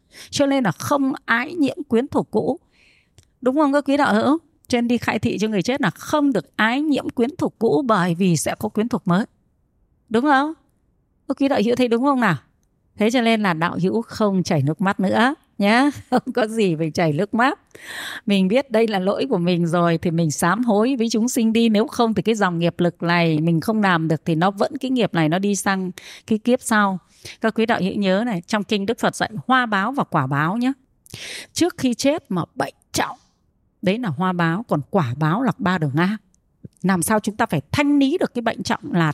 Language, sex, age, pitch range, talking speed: Vietnamese, female, 20-39, 180-245 Hz, 235 wpm